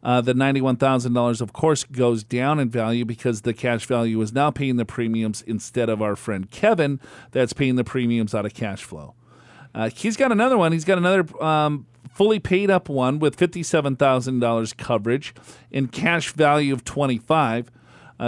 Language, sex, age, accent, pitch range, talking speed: English, male, 40-59, American, 120-165 Hz, 180 wpm